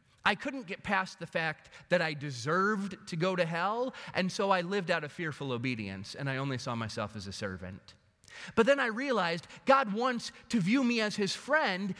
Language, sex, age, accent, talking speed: English, male, 30-49, American, 205 wpm